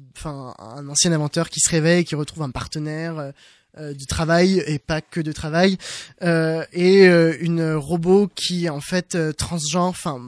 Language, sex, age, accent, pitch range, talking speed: French, male, 20-39, French, 155-180 Hz, 180 wpm